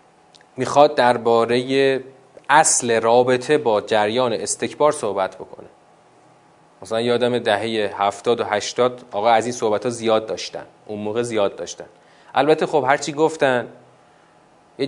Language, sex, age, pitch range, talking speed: Persian, male, 30-49, 120-165 Hz, 130 wpm